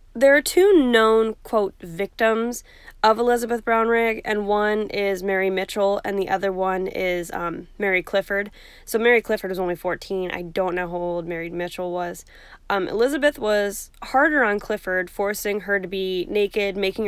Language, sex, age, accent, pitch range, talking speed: English, female, 10-29, American, 185-225 Hz, 170 wpm